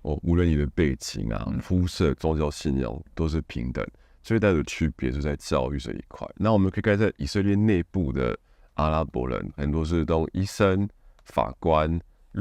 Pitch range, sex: 75-95 Hz, male